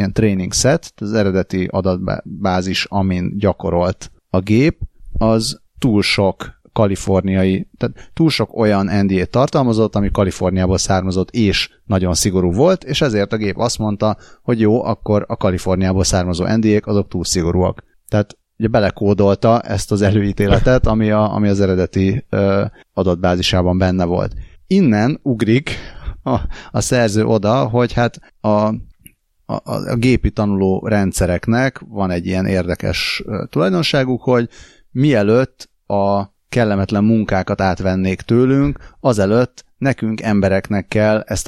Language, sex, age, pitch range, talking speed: Hungarian, male, 30-49, 95-115 Hz, 130 wpm